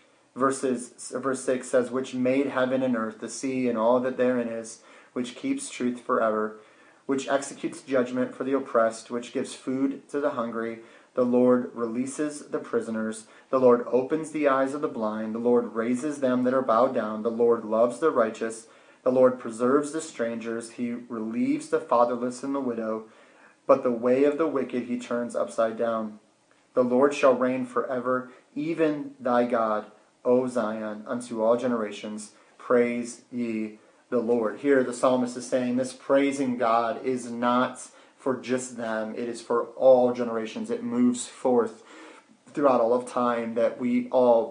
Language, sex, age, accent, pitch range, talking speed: English, male, 30-49, American, 115-130 Hz, 170 wpm